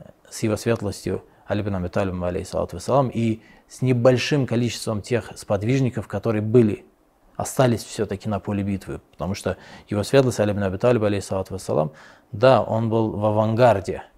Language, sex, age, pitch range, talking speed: Russian, male, 20-39, 100-115 Hz, 125 wpm